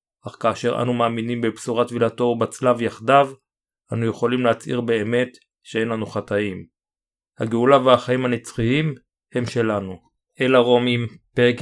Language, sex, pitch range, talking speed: Hebrew, male, 115-130 Hz, 120 wpm